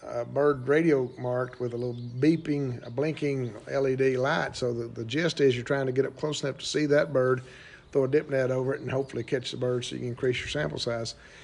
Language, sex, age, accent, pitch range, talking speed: English, male, 50-69, American, 125-145 Hz, 240 wpm